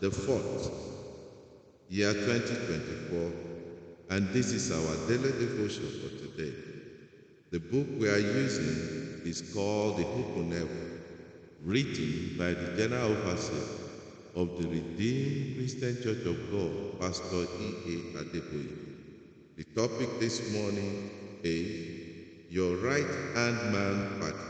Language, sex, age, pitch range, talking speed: English, male, 50-69, 90-115 Hz, 115 wpm